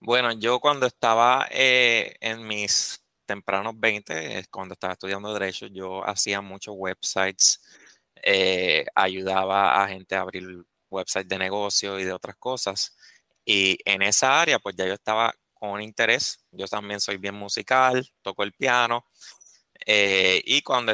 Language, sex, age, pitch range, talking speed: Spanish, male, 20-39, 100-125 Hz, 145 wpm